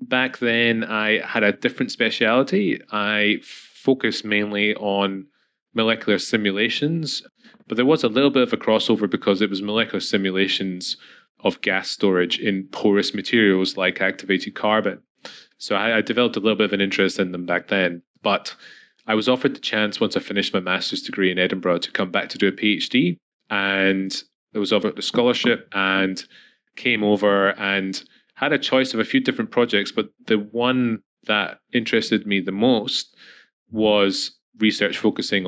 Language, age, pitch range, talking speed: English, 20-39, 95-110 Hz, 170 wpm